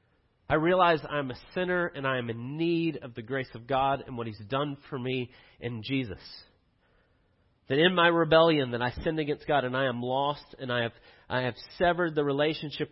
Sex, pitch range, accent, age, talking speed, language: male, 135-195 Hz, American, 40-59, 205 wpm, English